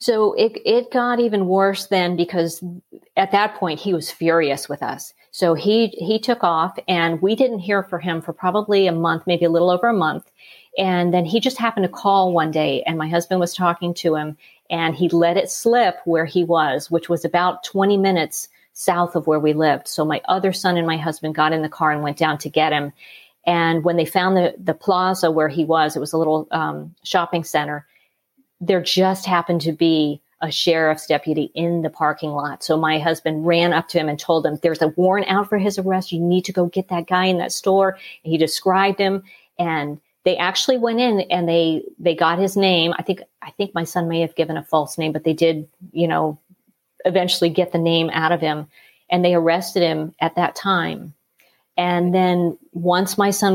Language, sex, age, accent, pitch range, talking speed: English, female, 40-59, American, 160-190 Hz, 215 wpm